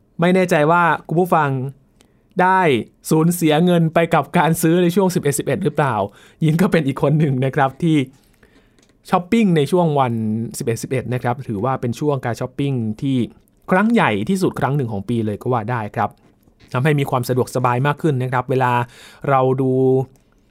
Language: Thai